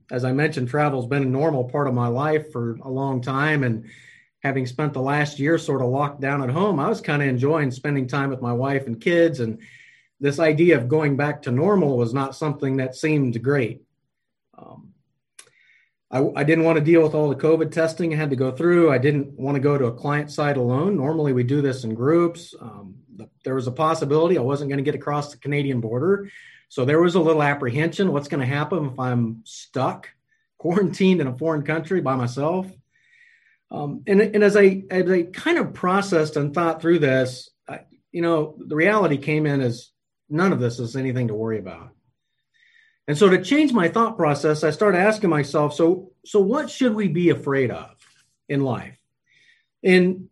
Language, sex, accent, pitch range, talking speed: English, male, American, 130-170 Hz, 205 wpm